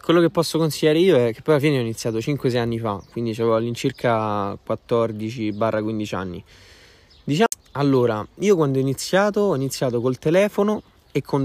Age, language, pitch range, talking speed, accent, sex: 20-39, Italian, 115-145 Hz, 170 wpm, native, male